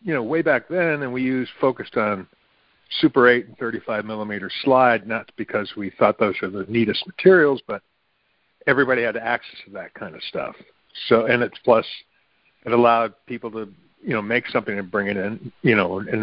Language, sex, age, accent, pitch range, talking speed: English, male, 50-69, American, 105-130 Hz, 195 wpm